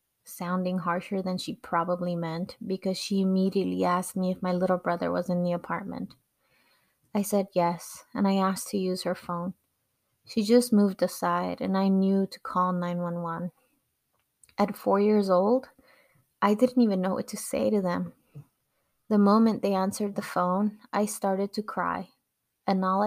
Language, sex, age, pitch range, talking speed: English, female, 20-39, 180-205 Hz, 165 wpm